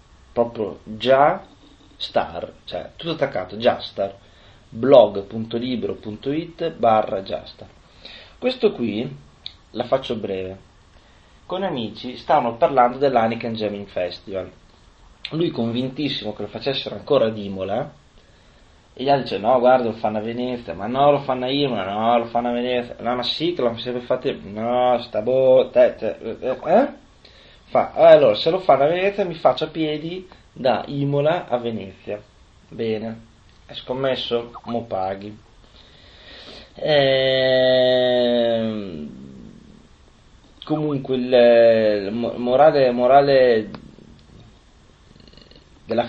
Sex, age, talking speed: male, 30-49, 120 wpm